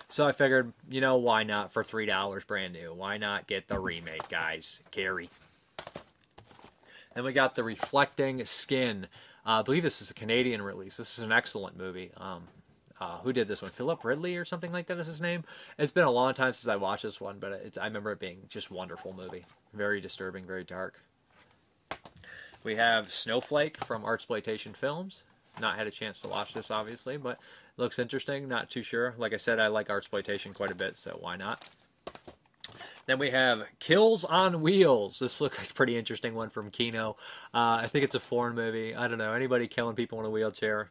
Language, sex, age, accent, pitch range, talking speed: English, male, 20-39, American, 110-130 Hz, 200 wpm